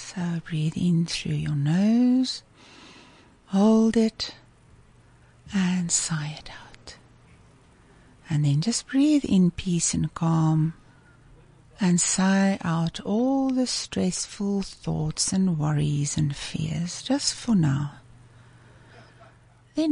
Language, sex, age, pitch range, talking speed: English, female, 60-79, 150-205 Hz, 105 wpm